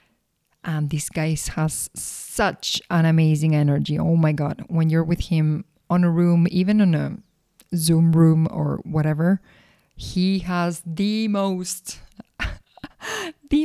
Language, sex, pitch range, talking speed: English, female, 155-190 Hz, 130 wpm